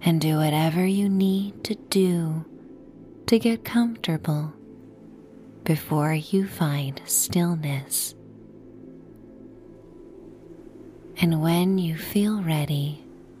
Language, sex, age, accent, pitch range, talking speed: English, female, 20-39, American, 135-195 Hz, 85 wpm